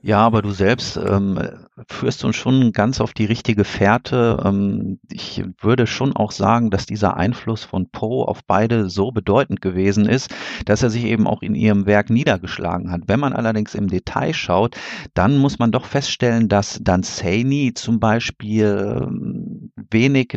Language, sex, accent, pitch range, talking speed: German, male, German, 100-115 Hz, 170 wpm